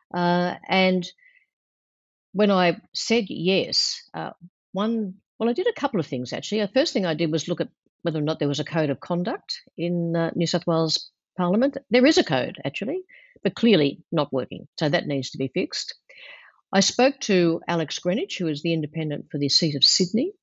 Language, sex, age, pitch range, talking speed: English, female, 50-69, 150-195 Hz, 200 wpm